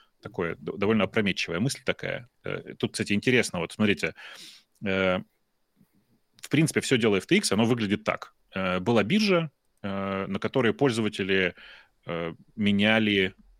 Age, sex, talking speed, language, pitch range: 30-49, male, 105 wpm, Russian, 100-135 Hz